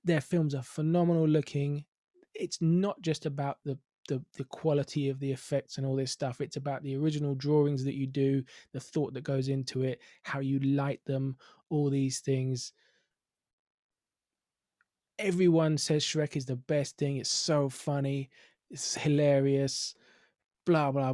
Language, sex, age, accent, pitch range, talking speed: English, male, 20-39, British, 135-160 Hz, 155 wpm